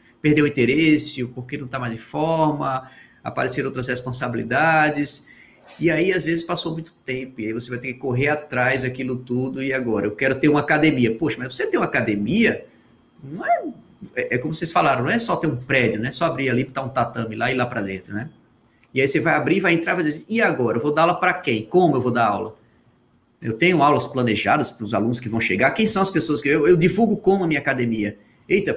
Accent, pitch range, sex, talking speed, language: Brazilian, 125-180 Hz, male, 240 wpm, Portuguese